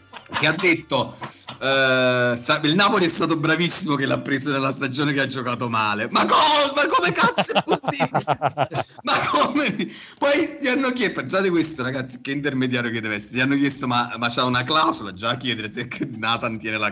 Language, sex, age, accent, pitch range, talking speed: Italian, male, 40-59, native, 120-160 Hz, 190 wpm